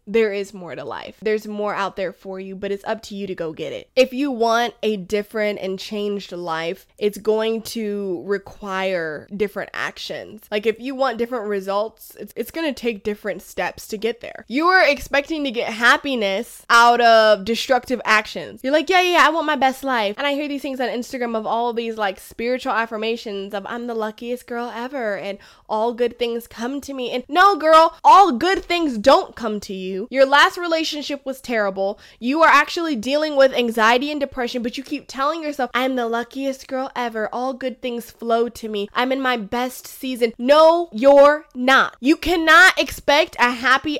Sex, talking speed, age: female, 200 wpm, 20-39